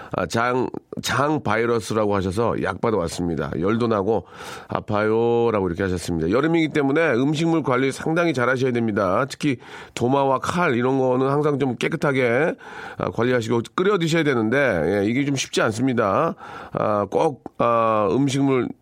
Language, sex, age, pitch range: Korean, male, 40-59, 115-155 Hz